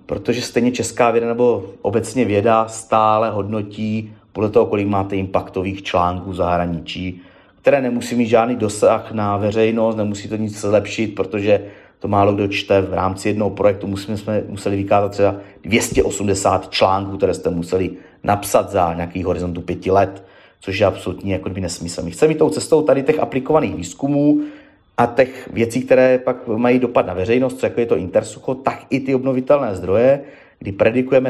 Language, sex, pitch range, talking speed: Czech, male, 100-120 Hz, 160 wpm